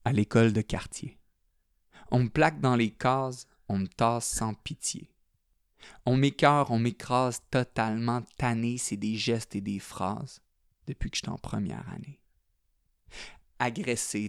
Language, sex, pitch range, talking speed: French, male, 110-140 Hz, 145 wpm